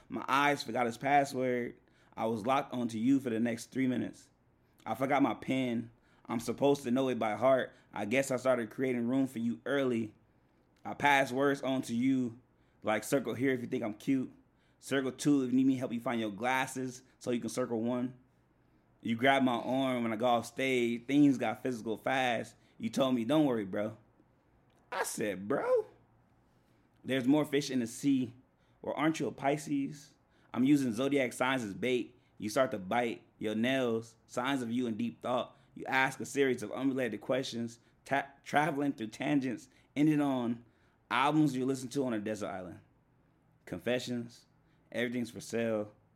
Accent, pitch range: American, 115-135 Hz